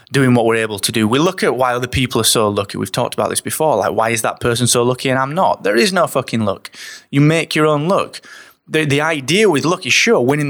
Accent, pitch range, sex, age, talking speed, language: British, 120-160 Hz, male, 20-39, 275 wpm, English